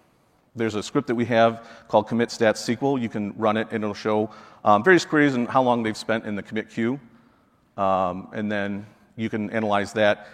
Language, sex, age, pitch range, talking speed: English, male, 40-59, 100-115 Hz, 195 wpm